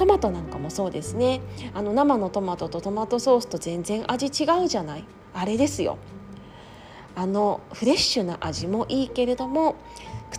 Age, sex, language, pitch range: 20-39, female, Japanese, 180-265 Hz